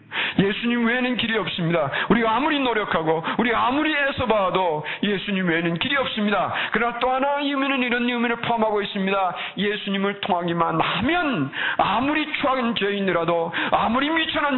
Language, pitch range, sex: Korean, 140-210 Hz, male